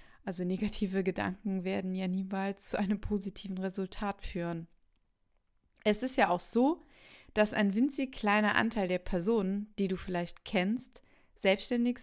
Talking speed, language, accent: 140 wpm, German, German